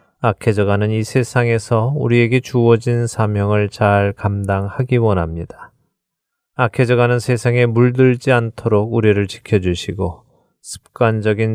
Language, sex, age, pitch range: Korean, male, 20-39, 100-125 Hz